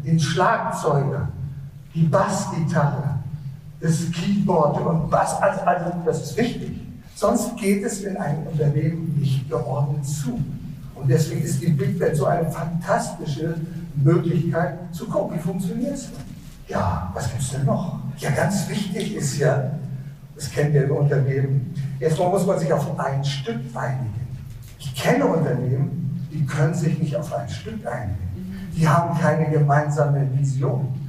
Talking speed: 150 wpm